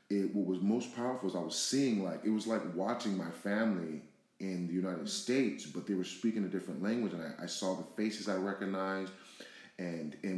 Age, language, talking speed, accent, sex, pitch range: 30-49, English, 215 wpm, American, male, 90-105 Hz